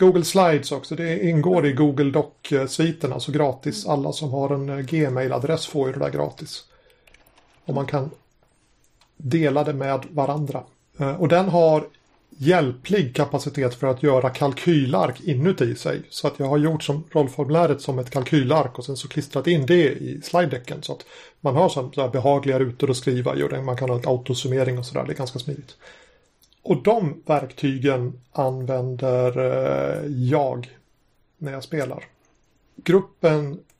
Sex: male